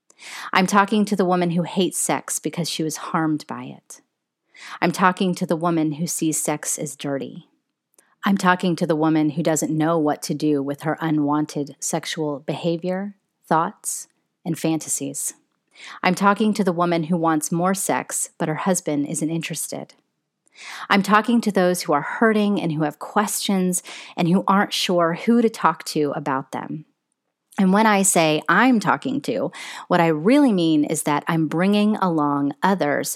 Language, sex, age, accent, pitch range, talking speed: English, female, 30-49, American, 155-195 Hz, 170 wpm